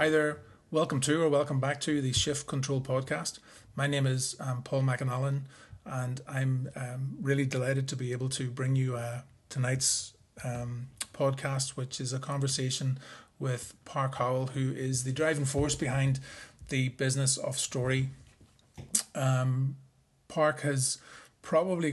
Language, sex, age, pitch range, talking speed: English, male, 30-49, 125-140 Hz, 145 wpm